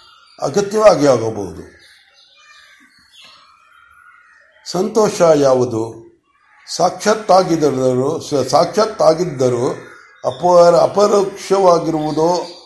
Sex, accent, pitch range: male, native, 140-180 Hz